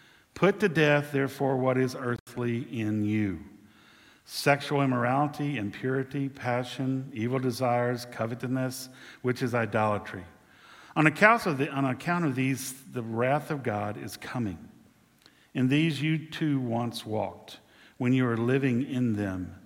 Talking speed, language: 135 wpm, English